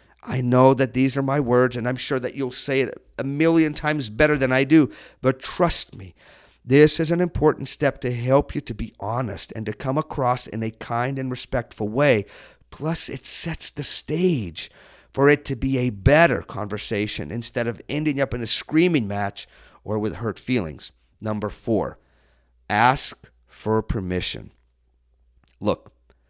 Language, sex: English, male